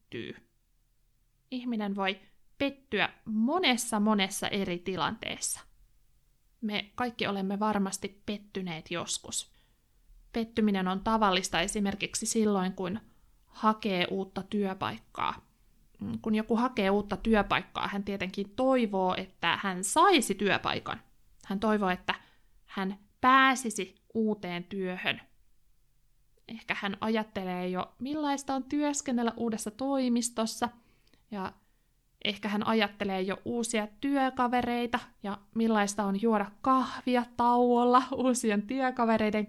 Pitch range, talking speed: 195-240 Hz, 100 wpm